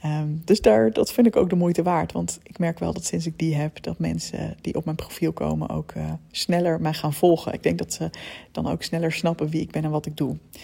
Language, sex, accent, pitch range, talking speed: Dutch, female, Dutch, 145-175 Hz, 265 wpm